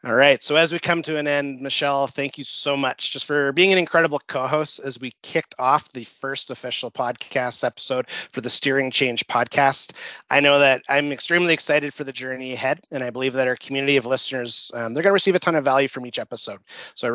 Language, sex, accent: English, male, American